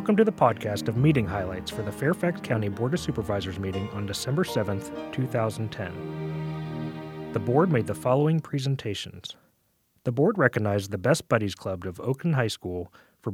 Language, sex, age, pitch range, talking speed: English, male, 30-49, 100-140 Hz, 165 wpm